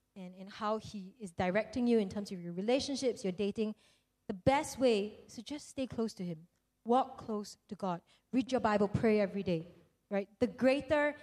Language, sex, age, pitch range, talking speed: English, female, 20-39, 200-255 Hz, 200 wpm